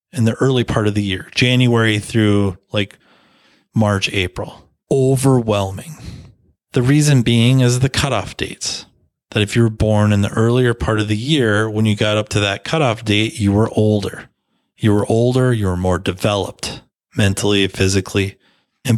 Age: 30-49